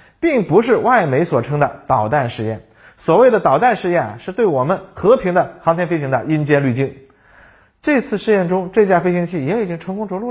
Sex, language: male, Chinese